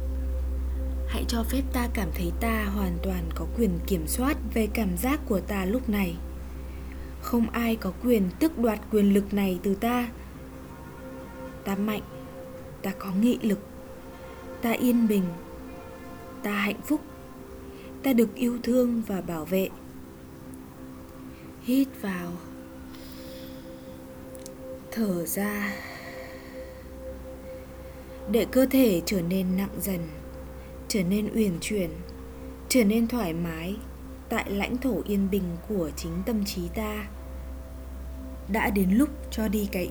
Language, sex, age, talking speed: Vietnamese, female, 20-39, 130 wpm